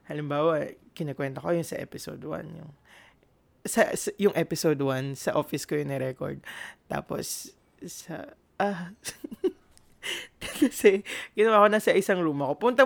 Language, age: Filipino, 20-39